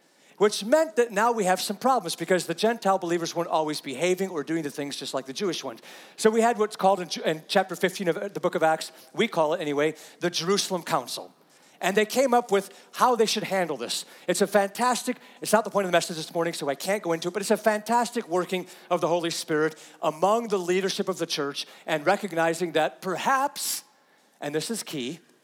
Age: 40-59